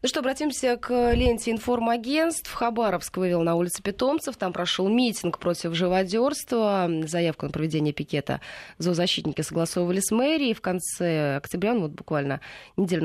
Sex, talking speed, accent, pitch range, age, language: female, 145 wpm, native, 165-220 Hz, 20-39, Russian